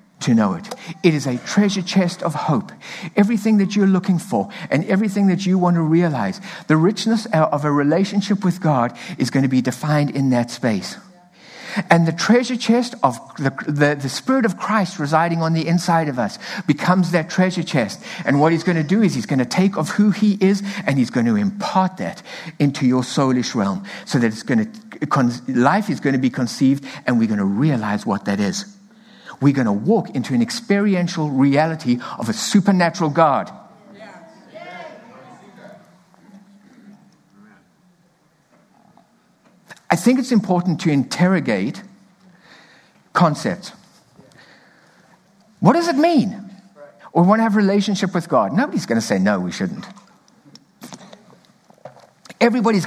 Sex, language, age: male, English, 60-79